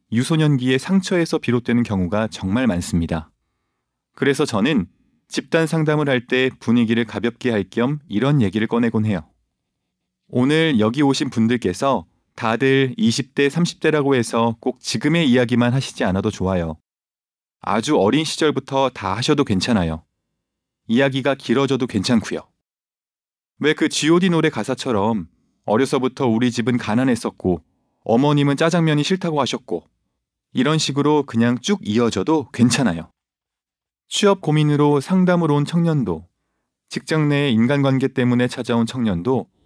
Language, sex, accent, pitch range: Korean, male, native, 110-145 Hz